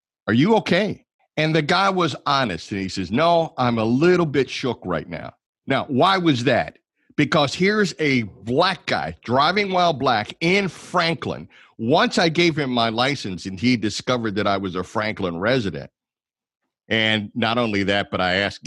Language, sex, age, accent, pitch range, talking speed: English, male, 50-69, American, 95-150 Hz, 175 wpm